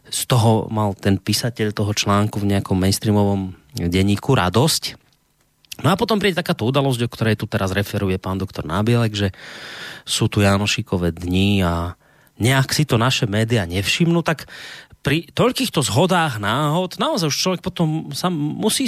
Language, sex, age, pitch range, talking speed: Slovak, male, 30-49, 100-140 Hz, 155 wpm